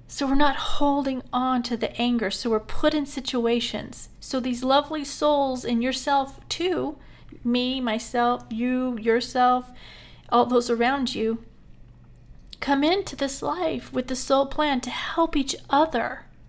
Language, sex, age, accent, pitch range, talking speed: English, female, 40-59, American, 205-250 Hz, 145 wpm